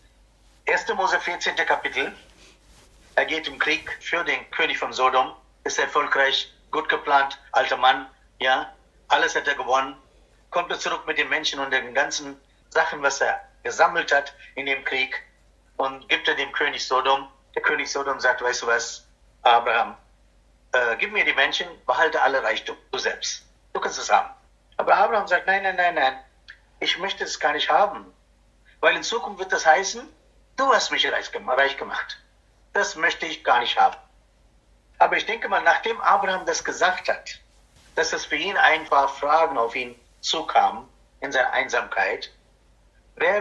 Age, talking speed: 50-69, 170 wpm